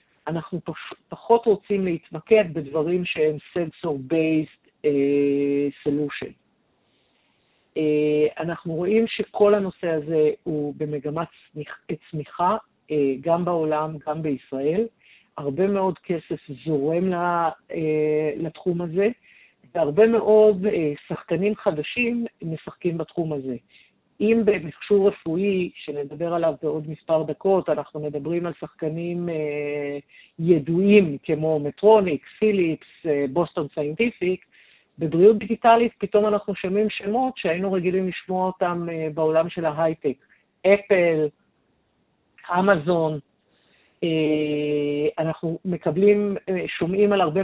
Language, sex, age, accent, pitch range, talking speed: Hebrew, female, 50-69, native, 155-195 Hz, 95 wpm